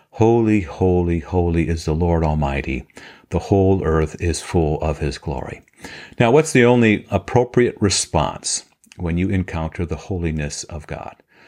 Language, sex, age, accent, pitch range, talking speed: English, male, 50-69, American, 85-110 Hz, 145 wpm